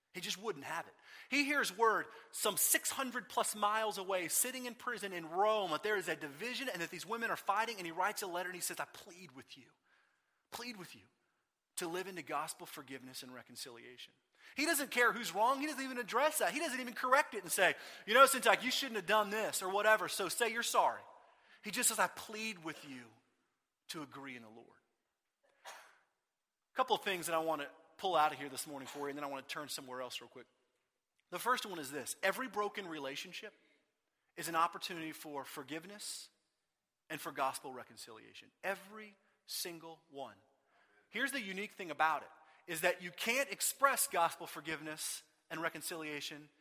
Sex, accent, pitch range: male, American, 155-220 Hz